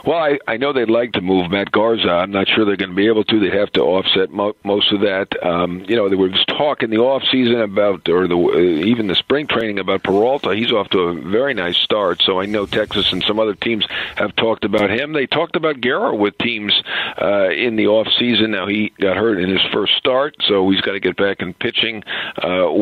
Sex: male